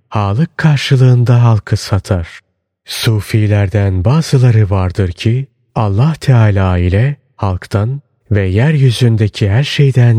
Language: Turkish